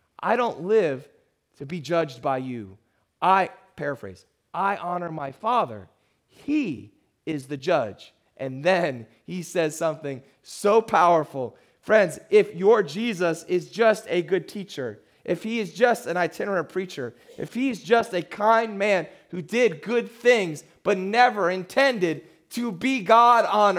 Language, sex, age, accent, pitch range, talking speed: English, male, 30-49, American, 145-215 Hz, 145 wpm